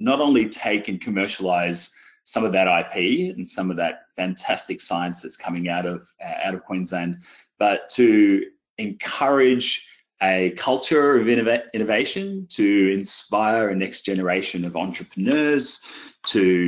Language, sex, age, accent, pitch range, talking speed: English, male, 30-49, Australian, 90-130 Hz, 140 wpm